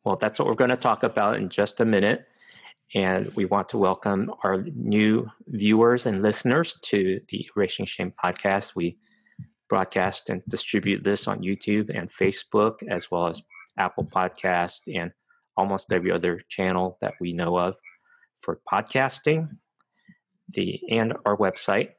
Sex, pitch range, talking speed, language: male, 95-130 Hz, 155 wpm, English